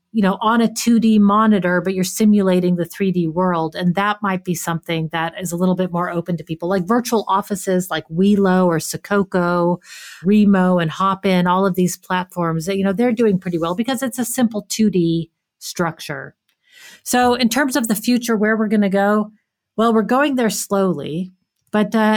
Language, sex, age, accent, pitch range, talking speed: English, female, 40-59, American, 180-220 Hz, 190 wpm